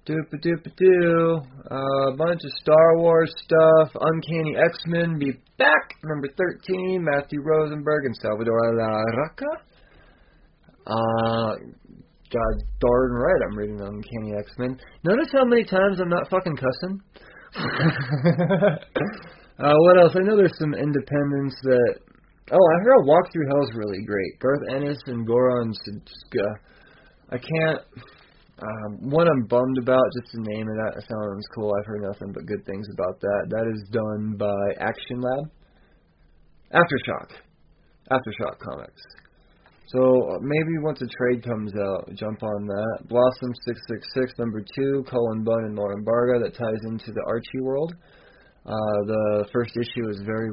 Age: 30-49